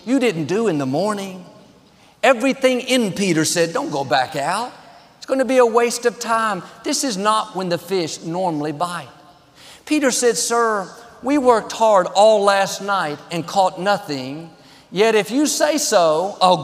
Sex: male